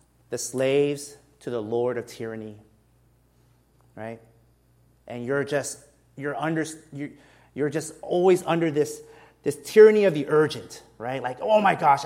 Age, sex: 30-49, male